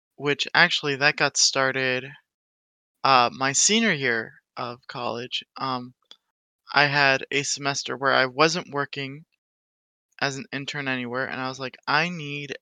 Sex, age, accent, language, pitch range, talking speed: male, 20-39, American, English, 130-155 Hz, 145 wpm